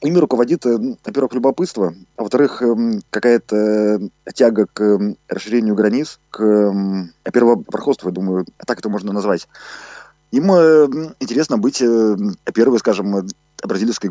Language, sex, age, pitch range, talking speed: Russian, male, 20-39, 90-115 Hz, 105 wpm